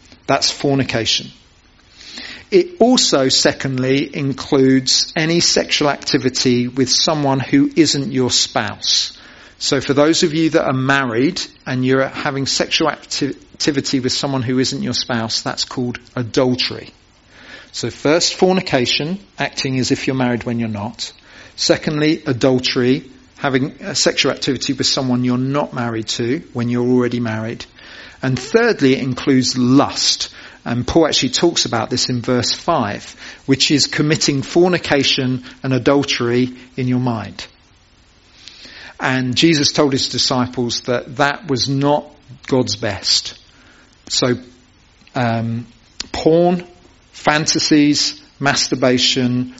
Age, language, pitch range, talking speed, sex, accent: 40-59, English, 120-145 Hz, 125 wpm, male, British